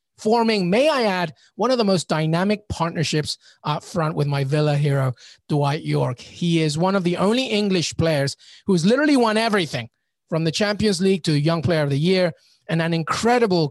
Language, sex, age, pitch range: English, male, 30-49, 145-175 Hz